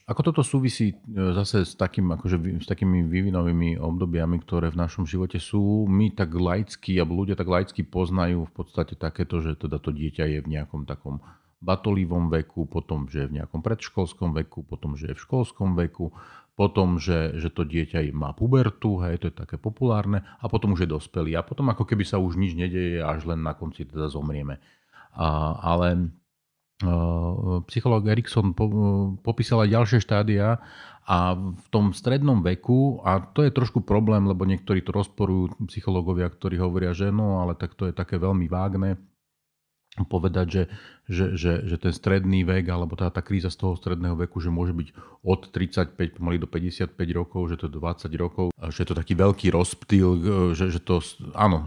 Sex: male